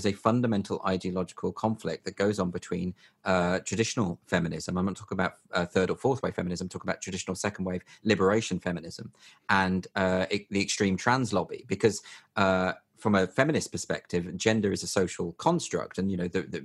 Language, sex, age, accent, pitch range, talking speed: English, male, 30-49, British, 90-105 Hz, 175 wpm